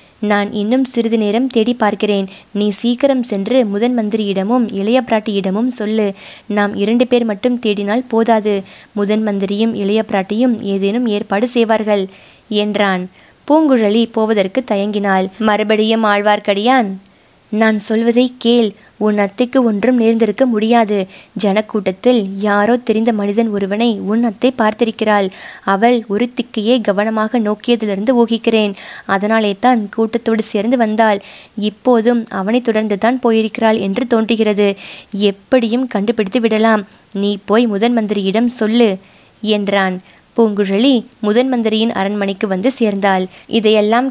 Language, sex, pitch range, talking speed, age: Tamil, female, 205-235 Hz, 105 wpm, 20-39